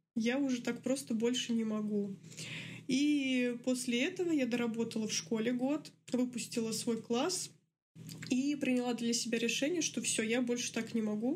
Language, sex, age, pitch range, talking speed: Russian, female, 20-39, 225-255 Hz, 160 wpm